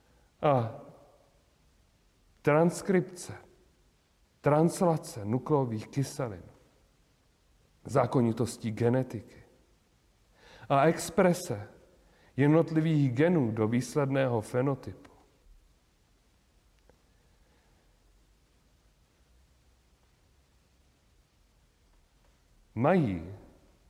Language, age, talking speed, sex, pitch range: Czech, 40-59, 40 wpm, male, 85-145 Hz